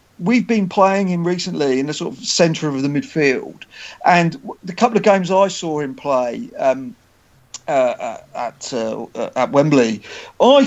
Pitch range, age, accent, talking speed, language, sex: 160-205 Hz, 40-59, British, 175 wpm, English, male